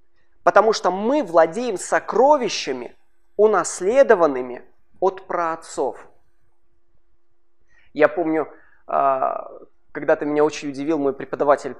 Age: 20-39